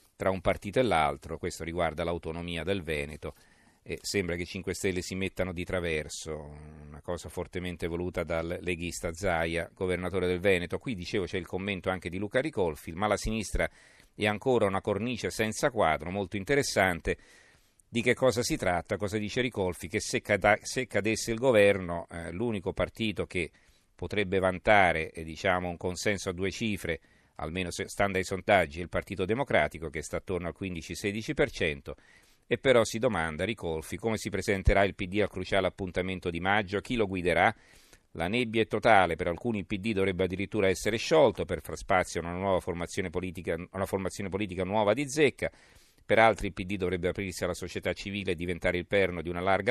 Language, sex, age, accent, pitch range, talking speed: Italian, male, 50-69, native, 85-105 Hz, 175 wpm